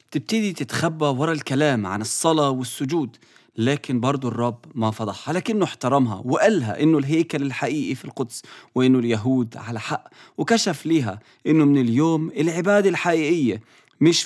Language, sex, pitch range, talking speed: English, male, 125-160 Hz, 135 wpm